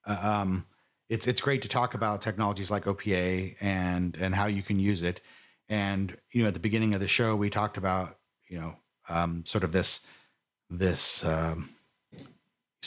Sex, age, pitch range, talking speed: male, 40-59, 100-125 Hz, 175 wpm